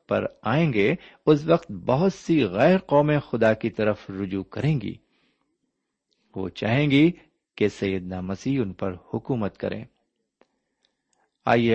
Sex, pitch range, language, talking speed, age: male, 100-135 Hz, Urdu, 135 wpm, 50-69